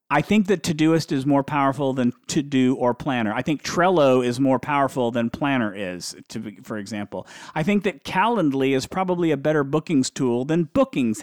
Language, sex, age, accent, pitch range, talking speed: English, male, 50-69, American, 120-165 Hz, 190 wpm